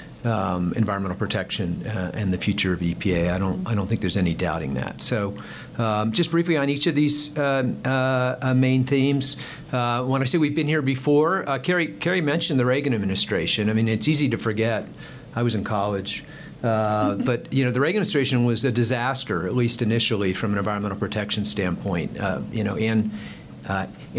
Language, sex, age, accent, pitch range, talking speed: English, male, 50-69, American, 105-135 Hz, 190 wpm